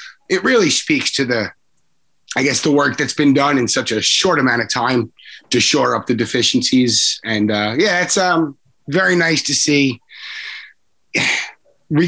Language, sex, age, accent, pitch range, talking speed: English, male, 30-49, American, 120-155 Hz, 170 wpm